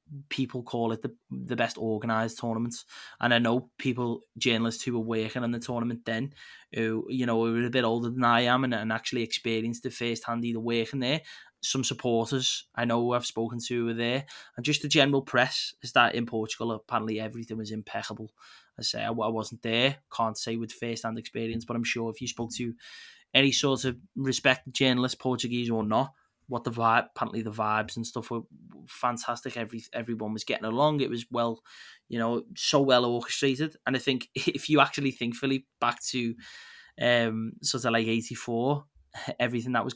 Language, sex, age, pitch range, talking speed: English, male, 20-39, 115-130 Hz, 195 wpm